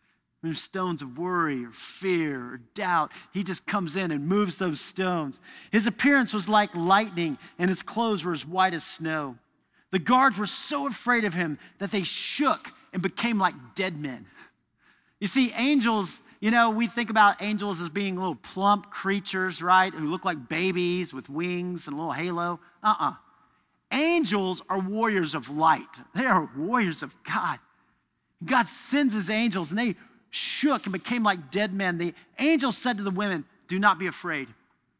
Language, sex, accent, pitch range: English, male, American, 175-235 Hz